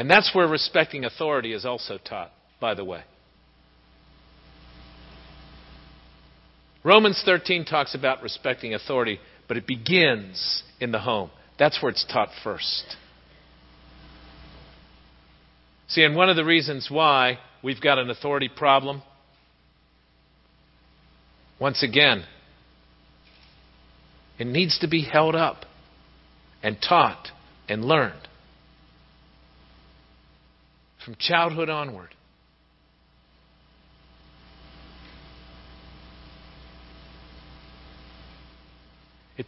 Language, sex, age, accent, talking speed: English, male, 50-69, American, 85 wpm